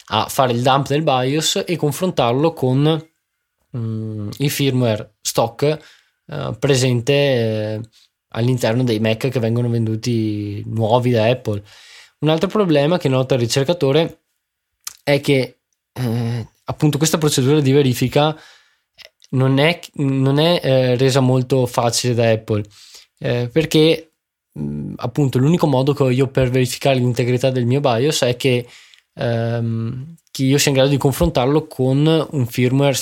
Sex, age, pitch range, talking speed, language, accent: male, 20-39, 115-145 Hz, 140 wpm, Italian, native